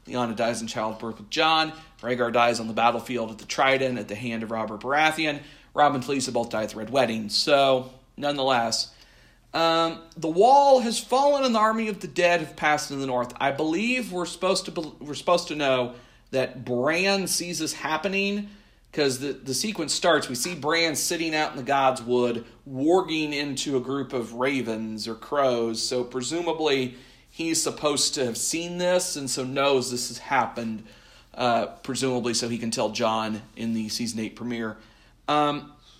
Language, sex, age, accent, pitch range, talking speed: English, male, 40-59, American, 120-170 Hz, 185 wpm